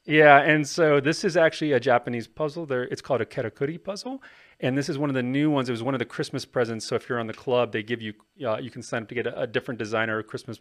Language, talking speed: English, 290 wpm